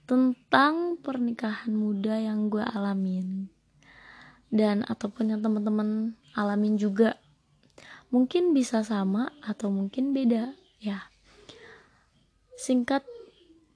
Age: 20-39